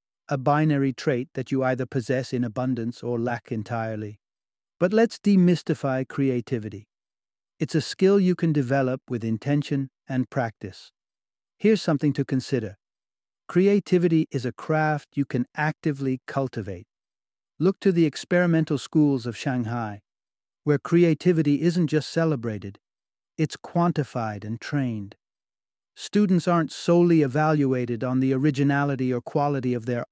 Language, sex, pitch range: English, male, 125-155 Hz